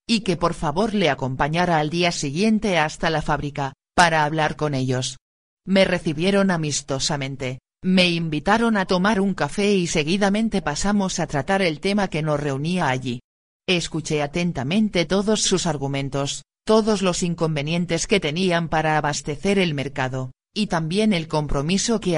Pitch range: 145-190 Hz